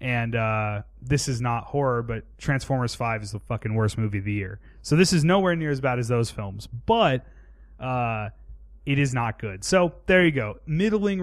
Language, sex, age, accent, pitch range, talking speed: English, male, 30-49, American, 110-160 Hz, 205 wpm